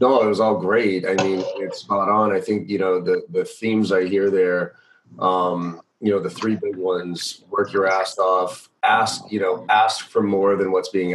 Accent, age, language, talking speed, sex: American, 30-49, English, 215 wpm, male